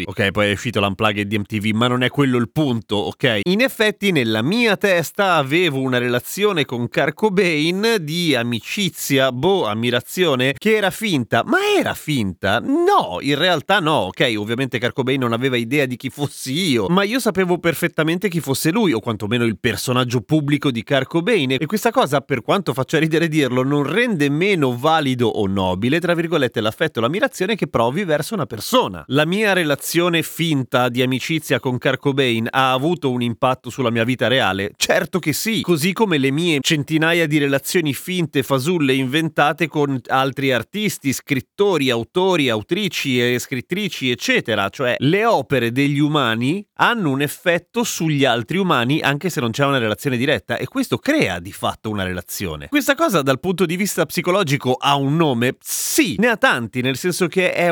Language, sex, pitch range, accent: Italian, male, 125-175 Hz, native